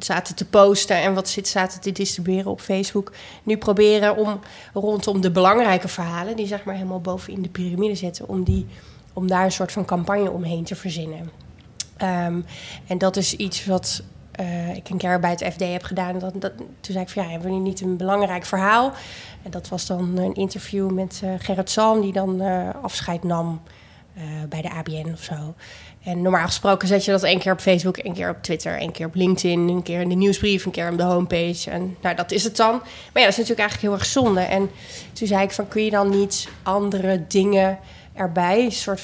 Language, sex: Dutch, female